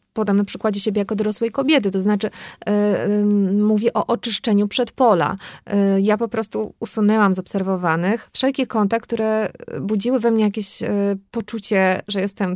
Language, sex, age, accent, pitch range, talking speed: Polish, female, 20-39, native, 190-225 Hz, 160 wpm